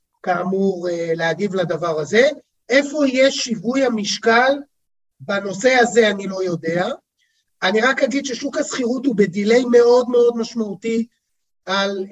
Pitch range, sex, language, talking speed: 185-235 Hz, male, Hebrew, 120 wpm